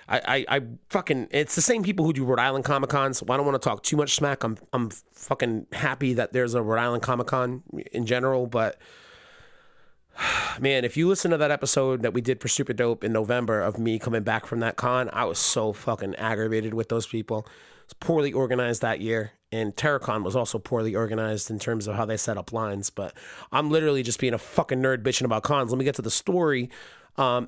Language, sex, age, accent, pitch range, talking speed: English, male, 30-49, American, 115-150 Hz, 225 wpm